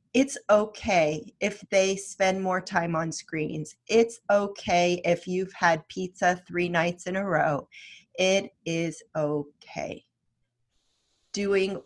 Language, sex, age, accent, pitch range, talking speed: English, female, 30-49, American, 170-200 Hz, 120 wpm